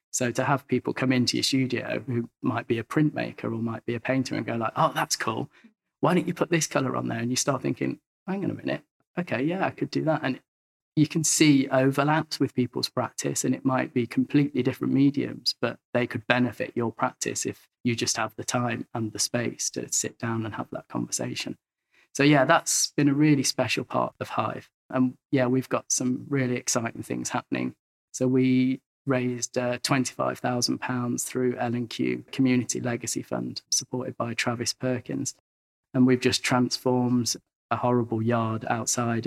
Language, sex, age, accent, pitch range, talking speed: English, male, 20-39, British, 115-130 Hz, 190 wpm